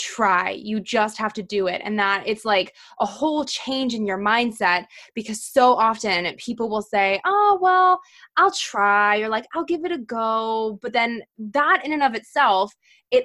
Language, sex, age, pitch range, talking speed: English, female, 20-39, 205-270 Hz, 190 wpm